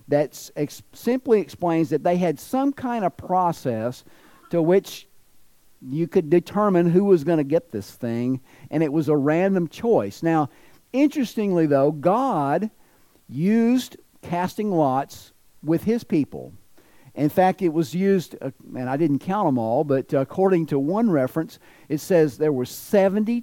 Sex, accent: male, American